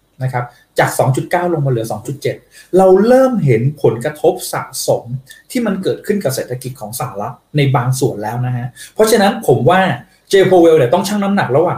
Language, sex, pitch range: Thai, male, 135-180 Hz